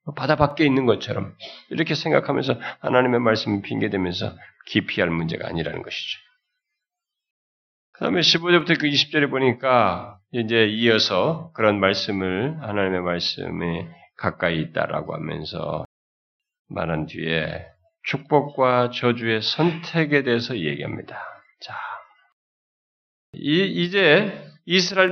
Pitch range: 95-160 Hz